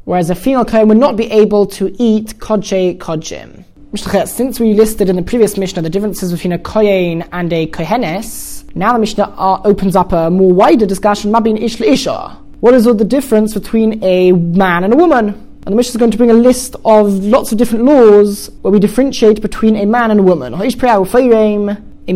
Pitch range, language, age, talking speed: 185-230 Hz, English, 20-39, 190 wpm